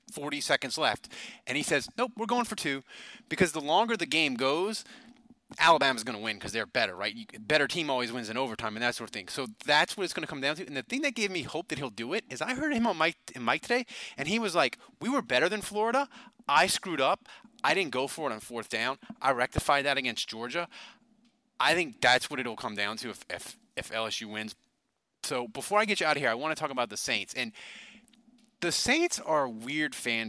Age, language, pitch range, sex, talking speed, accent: 30-49, English, 135-225 Hz, male, 250 wpm, American